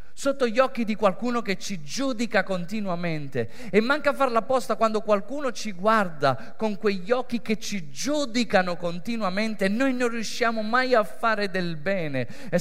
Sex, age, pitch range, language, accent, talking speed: male, 30-49, 195-250 Hz, Italian, native, 155 wpm